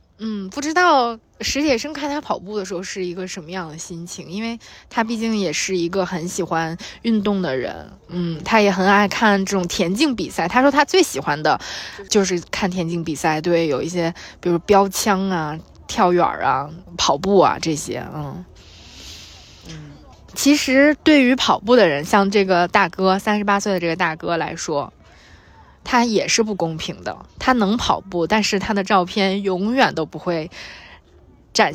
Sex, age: female, 20-39